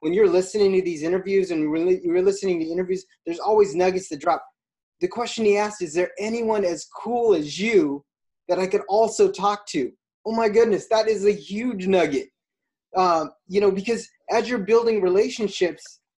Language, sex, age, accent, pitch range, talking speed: English, male, 20-39, American, 170-215 Hz, 185 wpm